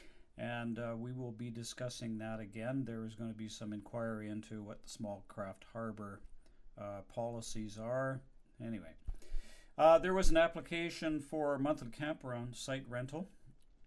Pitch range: 115-135 Hz